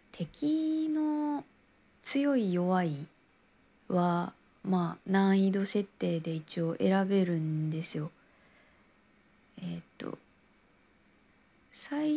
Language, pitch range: Japanese, 160-210 Hz